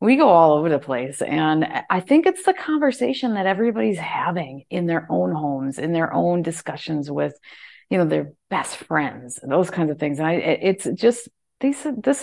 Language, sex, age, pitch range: English, female, 40-59, 155-195 Hz